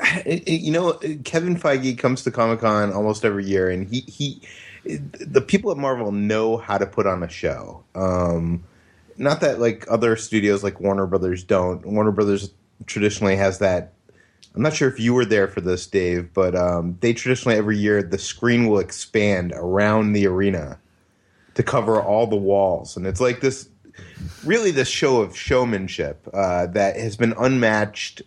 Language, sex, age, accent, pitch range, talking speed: English, male, 30-49, American, 95-115 Hz, 170 wpm